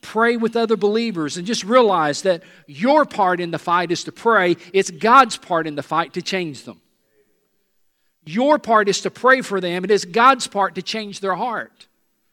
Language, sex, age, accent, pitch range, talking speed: English, male, 50-69, American, 140-195 Hz, 195 wpm